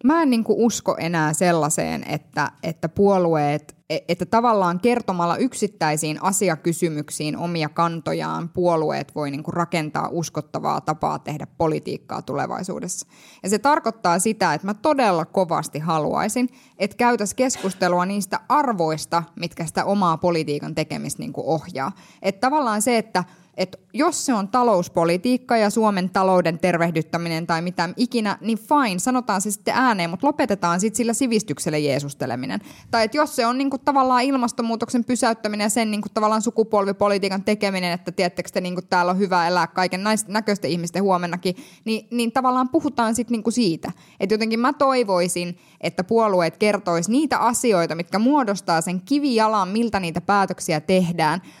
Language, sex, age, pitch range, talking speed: Finnish, female, 20-39, 170-230 Hz, 145 wpm